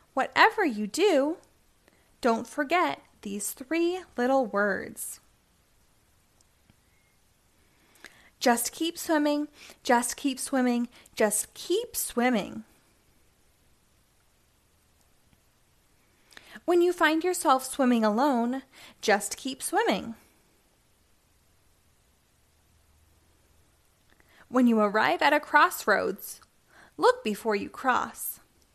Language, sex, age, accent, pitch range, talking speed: English, female, 20-39, American, 200-300 Hz, 75 wpm